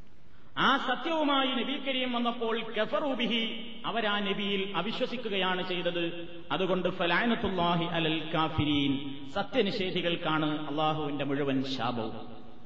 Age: 30-49